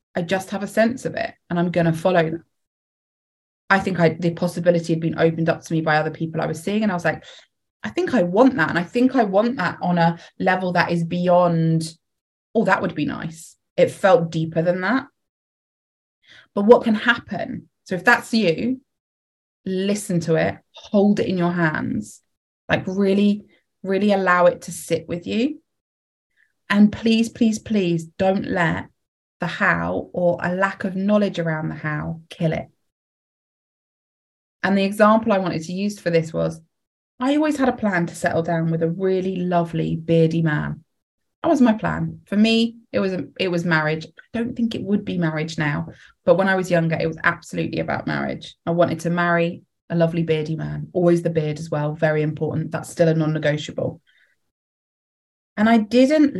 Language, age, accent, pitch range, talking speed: English, 20-39, British, 165-205 Hz, 190 wpm